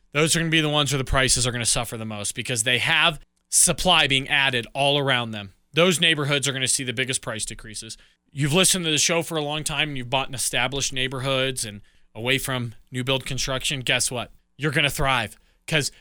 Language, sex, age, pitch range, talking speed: English, male, 20-39, 135-195 Hz, 235 wpm